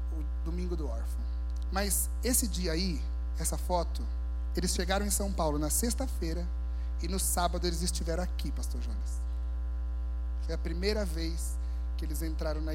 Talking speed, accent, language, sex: 155 wpm, Brazilian, Portuguese, male